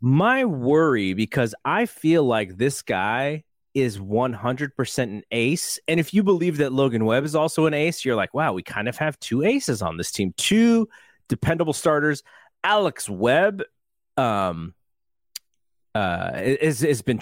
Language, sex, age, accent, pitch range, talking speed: English, male, 30-49, American, 105-150 Hz, 165 wpm